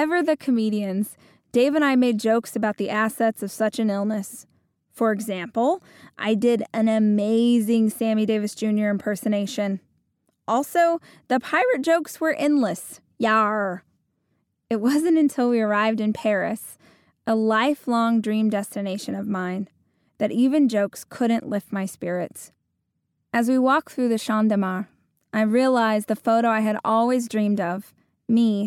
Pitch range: 205-235 Hz